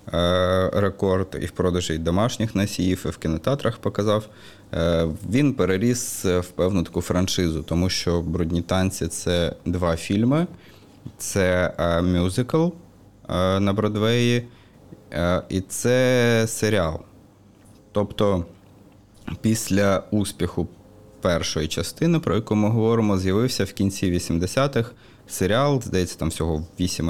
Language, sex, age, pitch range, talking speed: Ukrainian, male, 20-39, 90-110 Hz, 110 wpm